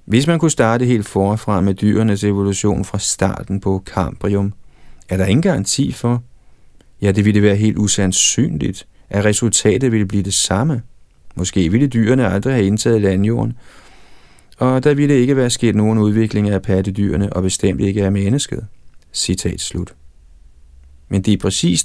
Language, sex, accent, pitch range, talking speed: Danish, male, native, 95-115 Hz, 160 wpm